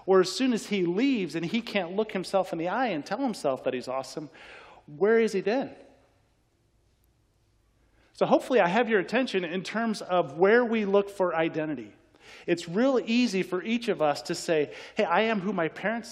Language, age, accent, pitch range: English, 40-59, American, 135-210 Hz